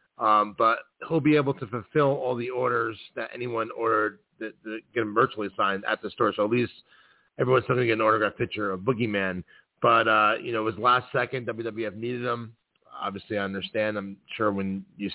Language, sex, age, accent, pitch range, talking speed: English, male, 30-49, American, 105-120 Hz, 200 wpm